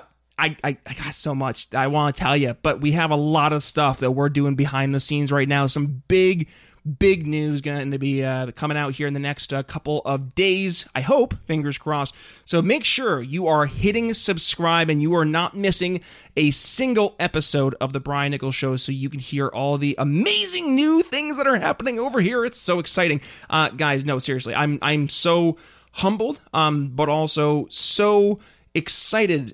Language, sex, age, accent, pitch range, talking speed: English, male, 20-39, American, 140-180 Hz, 200 wpm